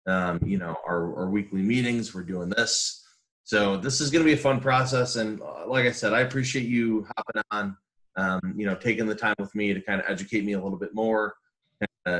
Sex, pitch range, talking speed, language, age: male, 100-120 Hz, 225 wpm, English, 20-39